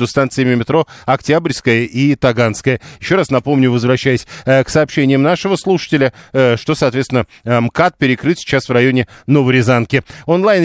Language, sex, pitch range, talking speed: Russian, male, 125-150 Hz, 140 wpm